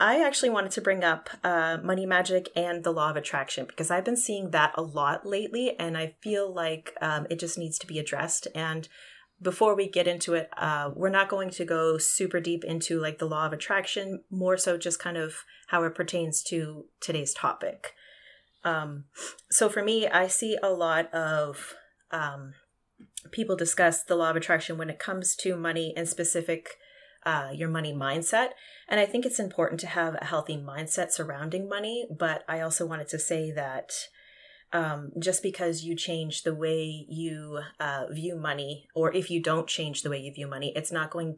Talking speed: 195 wpm